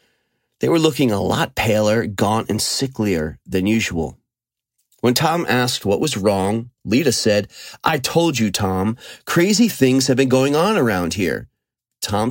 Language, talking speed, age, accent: English, 155 wpm, 30-49, American